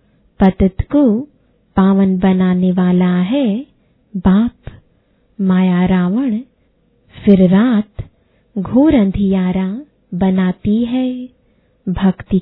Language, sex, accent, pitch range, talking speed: English, female, Indian, 185-235 Hz, 75 wpm